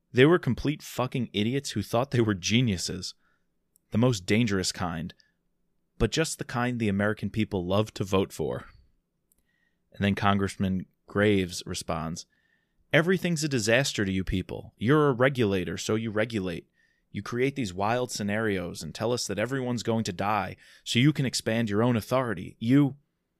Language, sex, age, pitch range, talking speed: English, male, 20-39, 100-125 Hz, 160 wpm